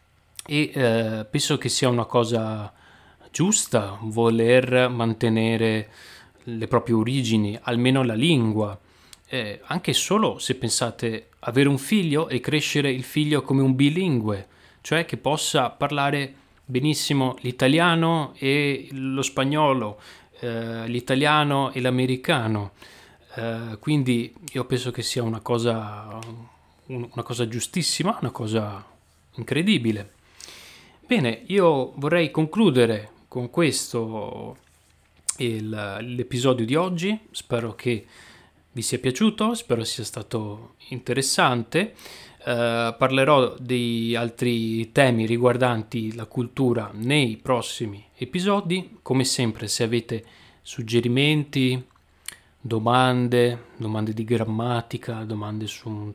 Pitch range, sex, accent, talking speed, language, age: 115-135 Hz, male, native, 105 wpm, Italian, 30-49